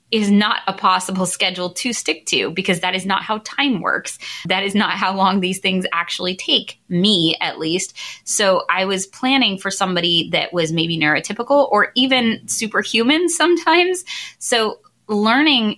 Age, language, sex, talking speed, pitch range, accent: 20-39, English, female, 165 wpm, 170-215 Hz, American